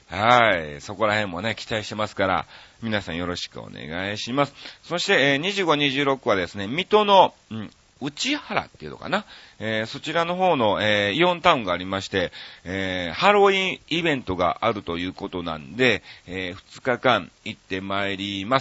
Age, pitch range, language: 40-59, 95-145 Hz, Japanese